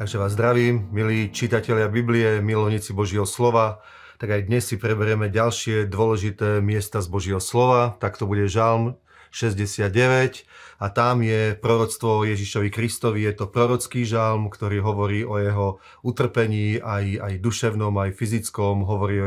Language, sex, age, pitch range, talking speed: Slovak, male, 30-49, 105-120 Hz, 150 wpm